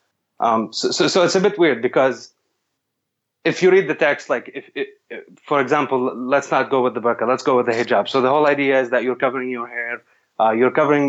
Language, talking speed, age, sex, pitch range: English, 235 wpm, 20-39, male, 125-145 Hz